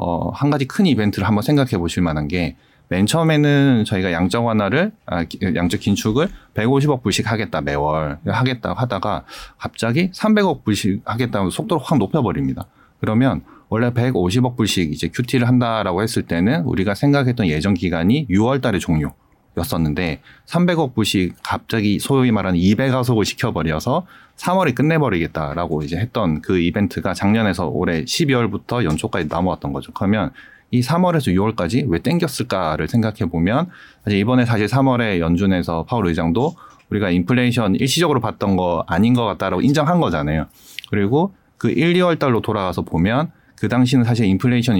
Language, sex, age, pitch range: Korean, male, 30-49, 90-125 Hz